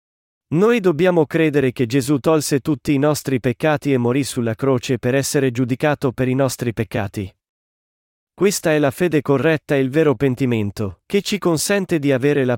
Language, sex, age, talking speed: Italian, male, 30-49, 170 wpm